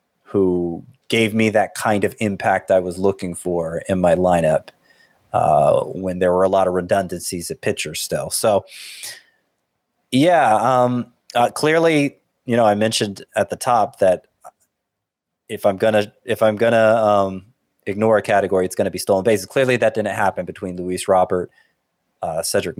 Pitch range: 95-115 Hz